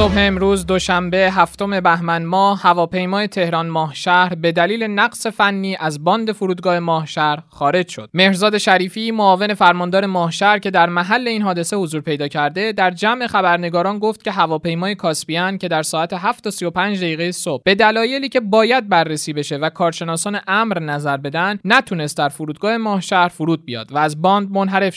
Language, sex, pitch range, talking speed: Persian, male, 165-210 Hz, 160 wpm